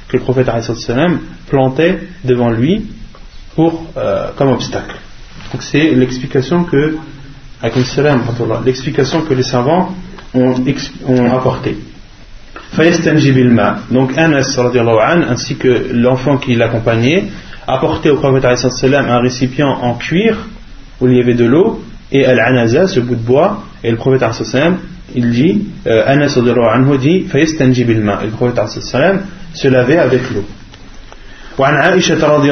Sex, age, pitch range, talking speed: male, 30-49, 120-145 Hz, 120 wpm